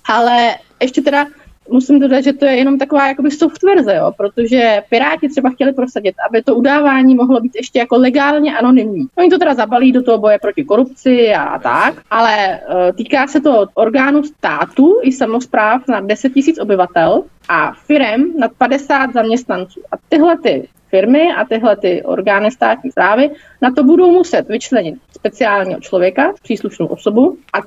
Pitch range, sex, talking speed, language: 225-295 Hz, female, 160 wpm, Czech